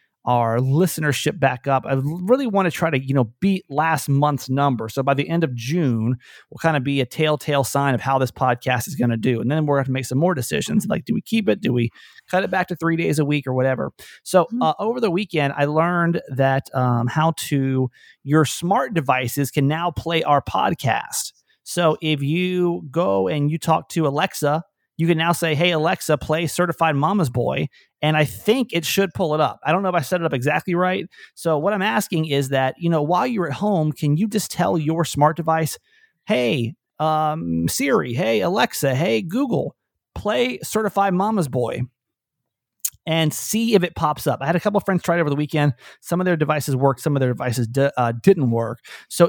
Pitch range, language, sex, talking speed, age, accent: 135-175 Hz, English, male, 220 wpm, 30-49, American